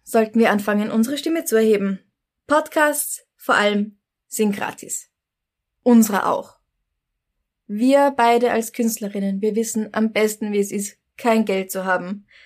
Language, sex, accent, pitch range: German, female, German, 205-260 Hz